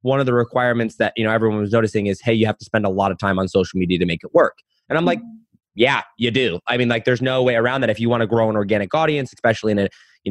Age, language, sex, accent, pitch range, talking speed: 20-39, English, male, American, 115-150 Hz, 310 wpm